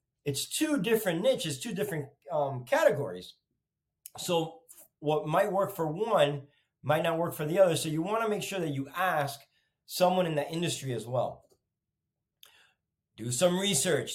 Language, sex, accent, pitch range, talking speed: English, male, American, 135-170 Hz, 160 wpm